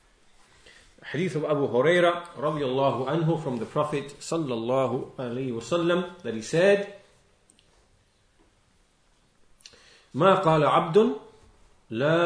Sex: male